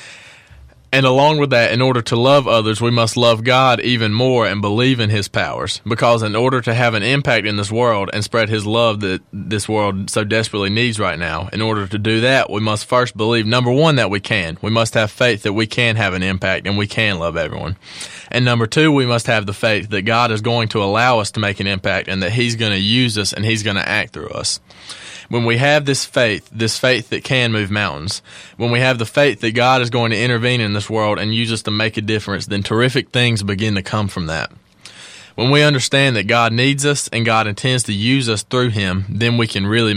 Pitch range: 105-125 Hz